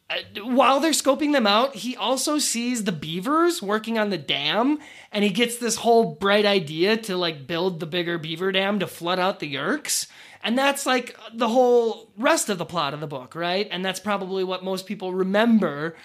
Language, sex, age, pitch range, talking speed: English, male, 20-39, 165-230 Hz, 200 wpm